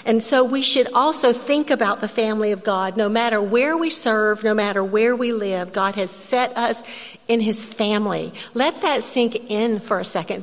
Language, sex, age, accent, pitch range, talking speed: English, female, 50-69, American, 200-235 Hz, 200 wpm